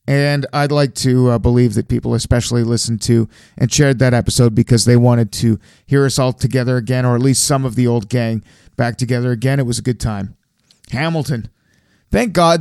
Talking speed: 205 wpm